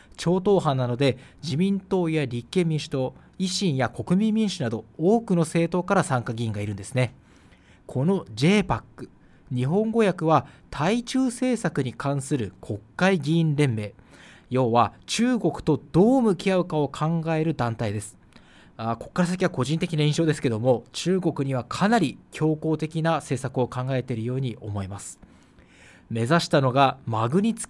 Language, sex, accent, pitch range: Japanese, male, native, 120-190 Hz